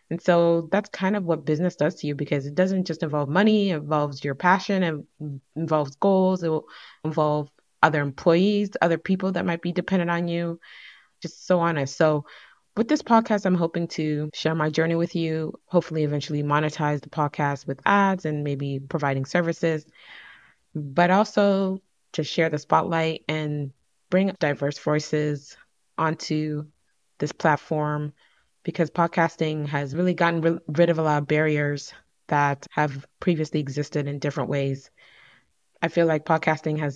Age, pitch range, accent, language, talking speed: 20-39, 145-175 Hz, American, English, 160 wpm